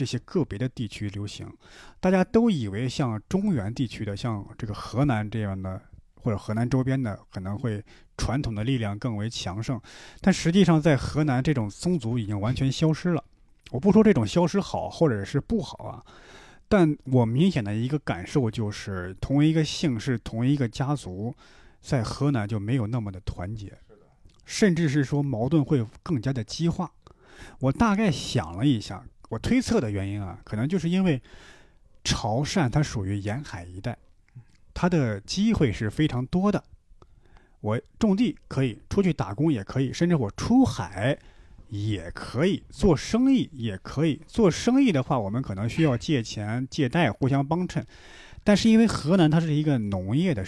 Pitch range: 105-160 Hz